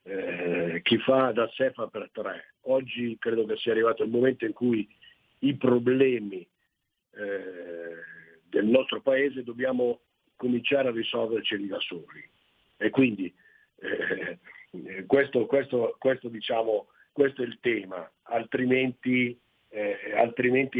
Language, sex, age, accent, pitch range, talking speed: Italian, male, 50-69, native, 110-135 Hz, 120 wpm